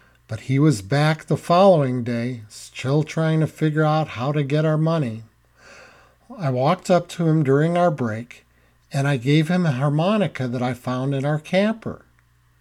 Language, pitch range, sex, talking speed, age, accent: English, 120-165 Hz, male, 175 wpm, 50-69, American